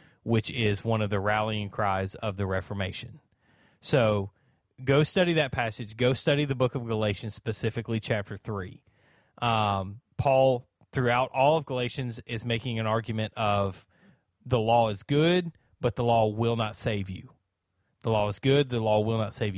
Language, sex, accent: English, male, American